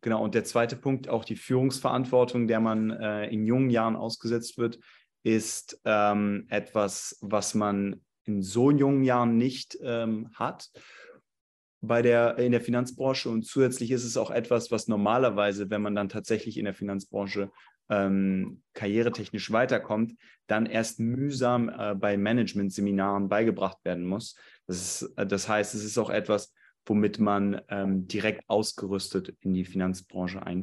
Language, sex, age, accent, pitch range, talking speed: German, male, 30-49, German, 105-125 Hz, 145 wpm